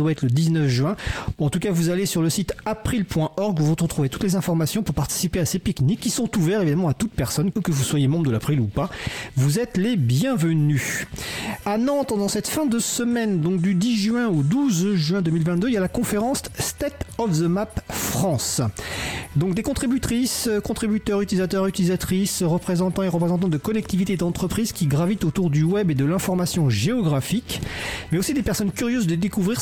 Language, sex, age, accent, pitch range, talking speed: French, male, 40-59, French, 150-205 Hz, 195 wpm